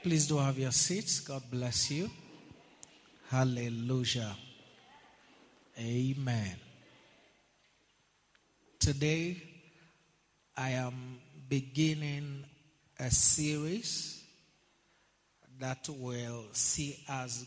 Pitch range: 125-155 Hz